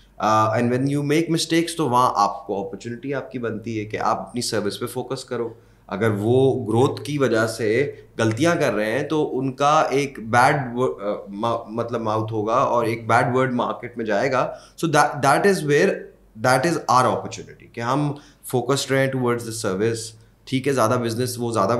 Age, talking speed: 20-39, 195 wpm